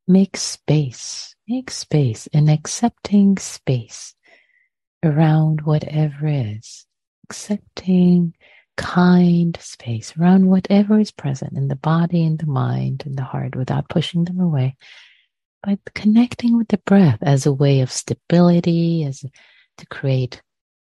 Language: English